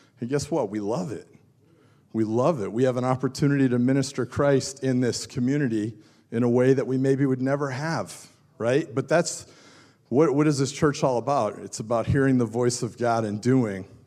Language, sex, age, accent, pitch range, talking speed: English, male, 40-59, American, 110-135 Hz, 200 wpm